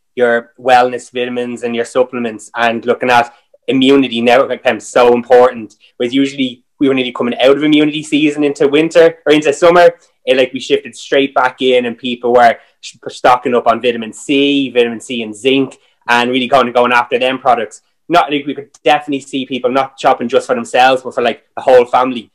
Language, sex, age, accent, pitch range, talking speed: English, male, 20-39, Irish, 120-145 Hz, 200 wpm